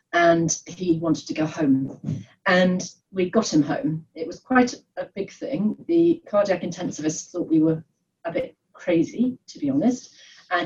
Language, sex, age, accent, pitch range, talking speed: English, female, 40-59, British, 160-200 Hz, 170 wpm